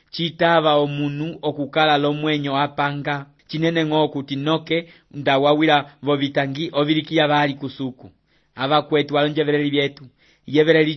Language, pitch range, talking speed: English, 140-165 Hz, 110 wpm